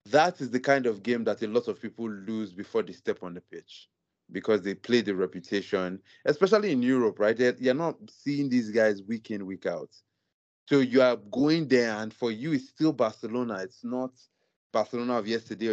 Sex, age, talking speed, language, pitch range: male, 30-49, 200 wpm, English, 110-135 Hz